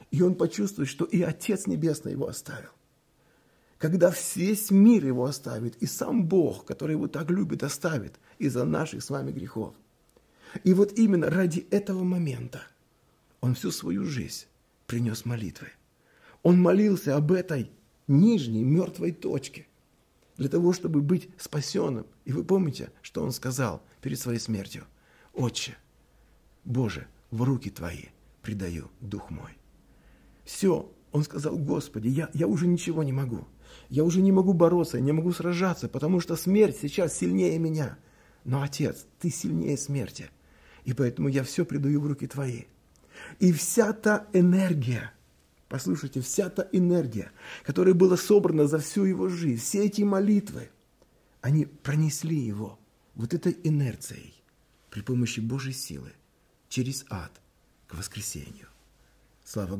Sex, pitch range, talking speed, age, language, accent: male, 120-180 Hz, 140 wpm, 40-59, Russian, native